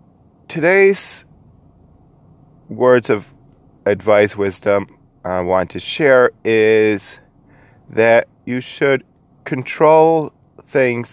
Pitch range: 95-120 Hz